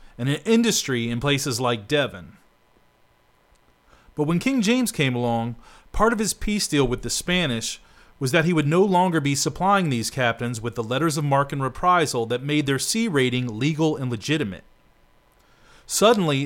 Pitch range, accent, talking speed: 120-165 Hz, American, 170 wpm